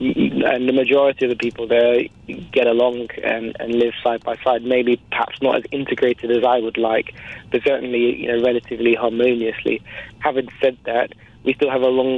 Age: 20-39